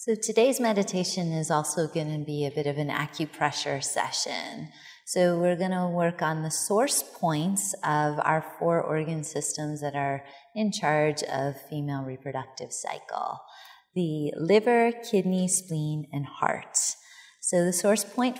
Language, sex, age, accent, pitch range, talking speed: English, female, 30-49, American, 150-190 Hz, 150 wpm